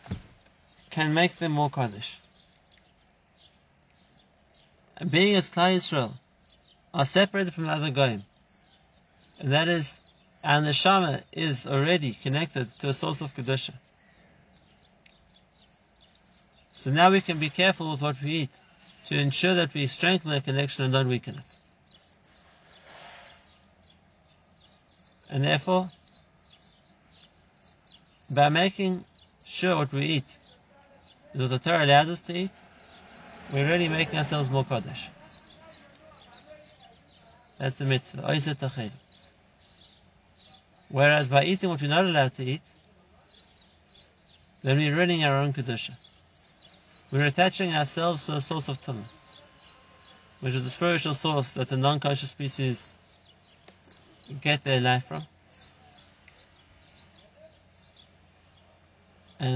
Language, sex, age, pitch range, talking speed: English, male, 50-69, 105-160 Hz, 115 wpm